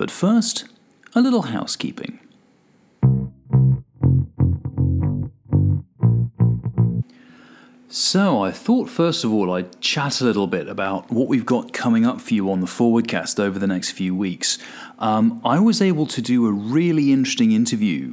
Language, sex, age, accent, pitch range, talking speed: English, male, 40-59, British, 90-140 Hz, 140 wpm